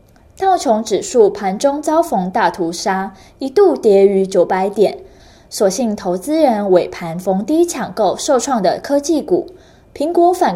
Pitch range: 185-290 Hz